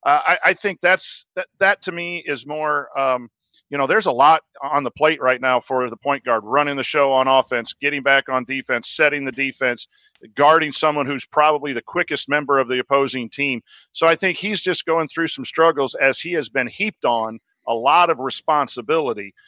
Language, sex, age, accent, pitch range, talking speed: English, male, 40-59, American, 130-160 Hz, 215 wpm